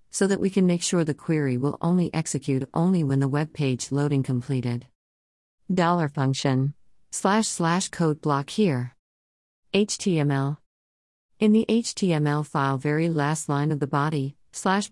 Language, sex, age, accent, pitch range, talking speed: English, female, 50-69, American, 130-165 Hz, 150 wpm